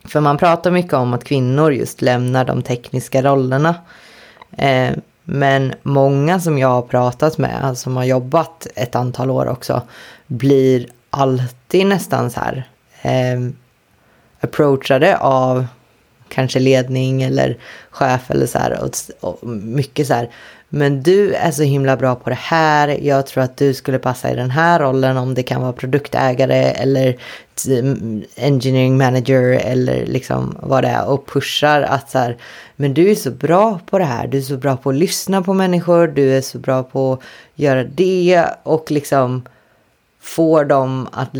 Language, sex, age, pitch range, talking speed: Swedish, female, 20-39, 125-150 Hz, 160 wpm